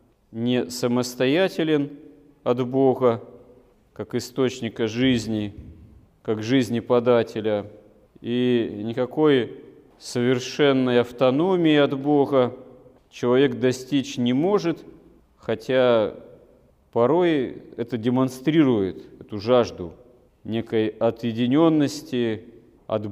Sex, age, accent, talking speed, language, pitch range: male, 40-59, native, 75 wpm, Russian, 115-135 Hz